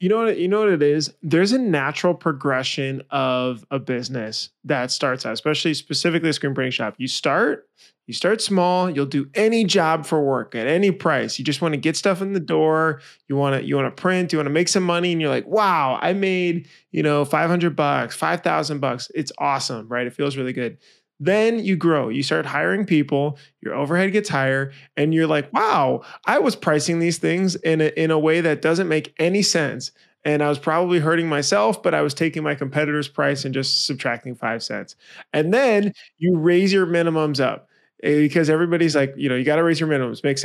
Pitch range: 140-175 Hz